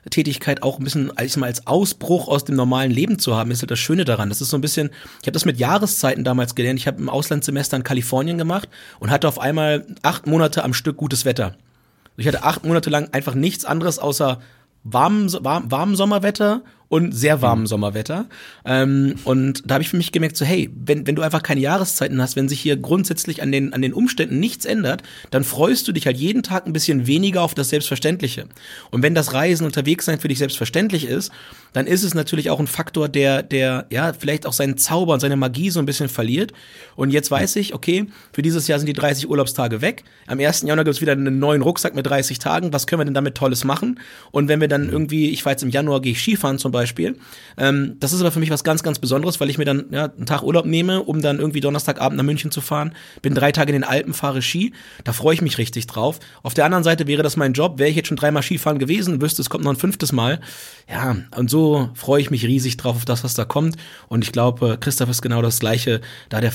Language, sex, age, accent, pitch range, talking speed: German, male, 30-49, German, 130-155 Hz, 240 wpm